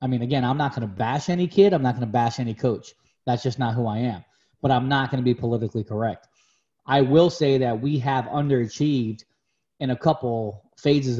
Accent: American